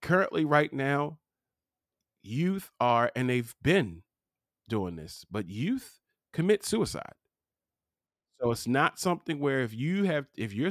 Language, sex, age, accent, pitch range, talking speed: English, male, 40-59, American, 100-120 Hz, 135 wpm